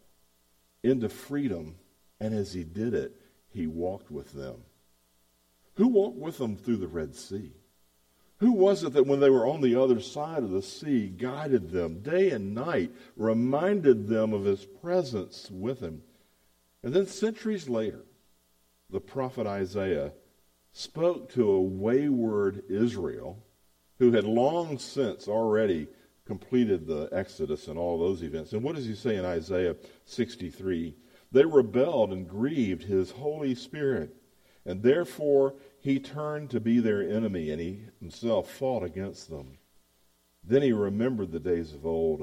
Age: 50-69